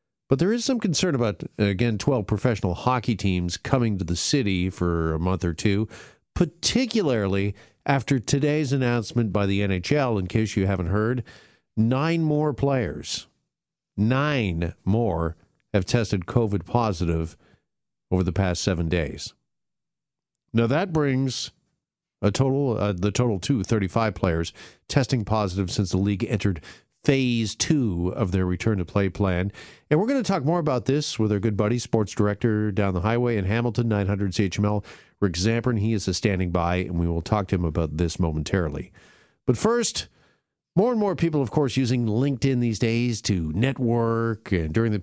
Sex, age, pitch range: male, 50-69, 95-135 Hz